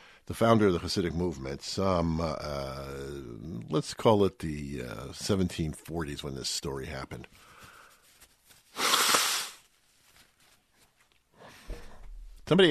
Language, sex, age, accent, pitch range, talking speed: English, male, 50-69, American, 75-95 Hz, 95 wpm